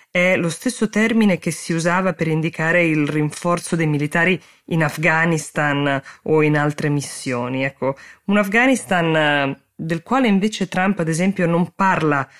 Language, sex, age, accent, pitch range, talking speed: Italian, female, 20-39, native, 150-185 Hz, 145 wpm